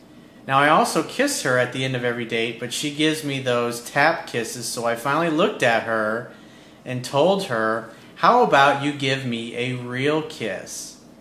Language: English